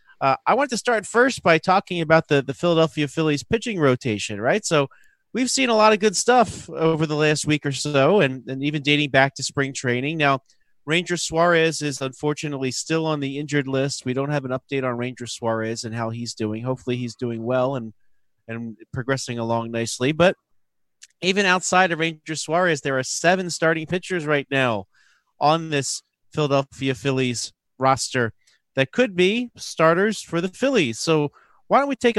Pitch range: 125-165 Hz